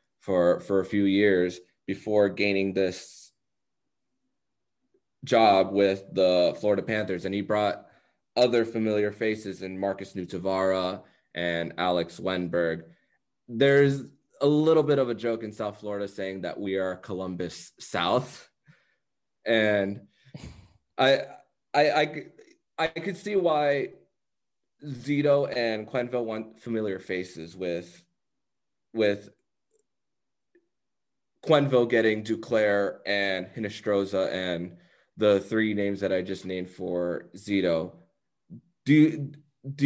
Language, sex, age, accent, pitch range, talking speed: English, male, 20-39, American, 95-125 Hz, 110 wpm